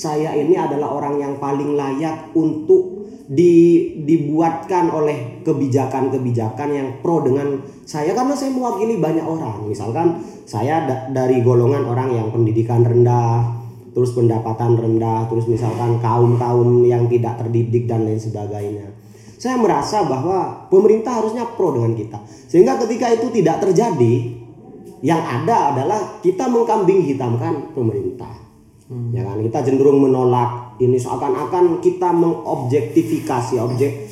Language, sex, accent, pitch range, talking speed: Indonesian, male, native, 120-160 Hz, 125 wpm